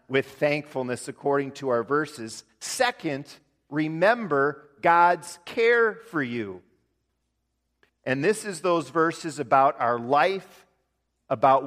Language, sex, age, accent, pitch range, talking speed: English, male, 40-59, American, 130-180 Hz, 110 wpm